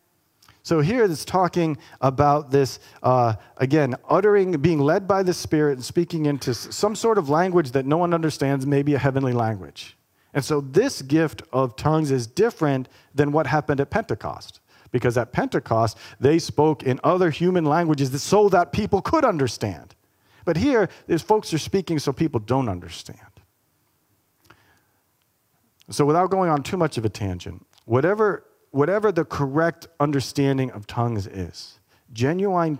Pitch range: 110-150 Hz